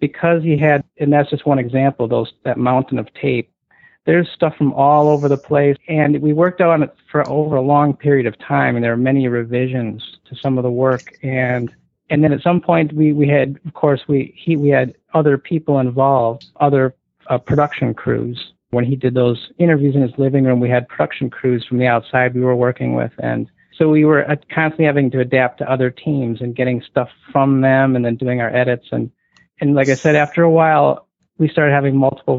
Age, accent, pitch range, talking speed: 50-69, American, 125-150 Hz, 215 wpm